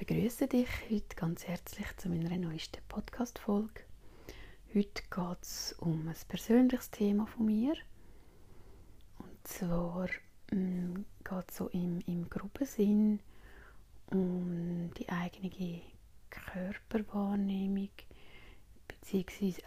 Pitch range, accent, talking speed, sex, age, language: 170-205 Hz, Swiss, 105 wpm, female, 30-49, German